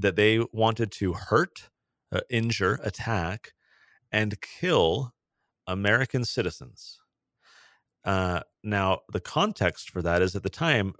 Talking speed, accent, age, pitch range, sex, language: 120 wpm, American, 30-49, 90-115 Hz, male, English